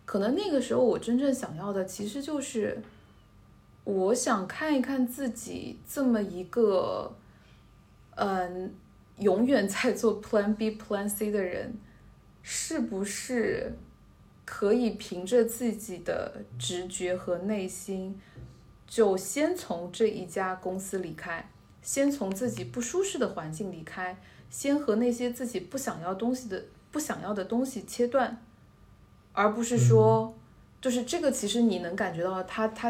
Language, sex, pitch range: Chinese, female, 185-240 Hz